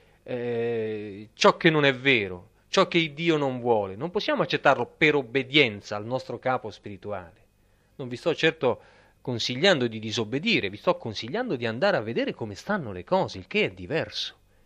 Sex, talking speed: male, 175 wpm